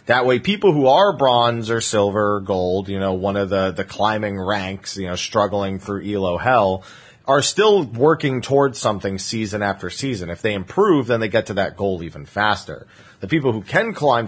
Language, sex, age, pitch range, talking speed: English, male, 30-49, 95-125 Hz, 200 wpm